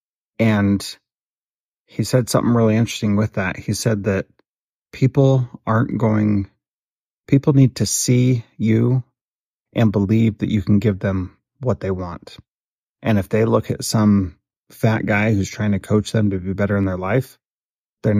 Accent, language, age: American, English, 30-49